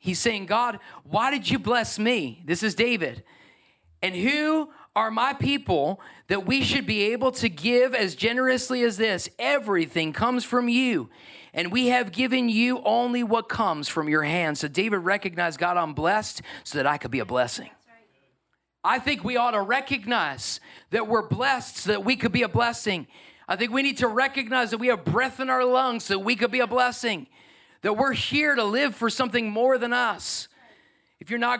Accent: American